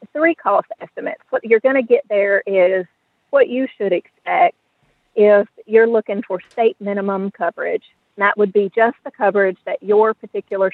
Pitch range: 190-245 Hz